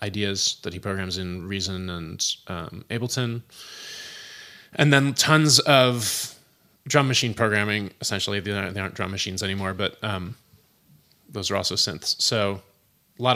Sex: male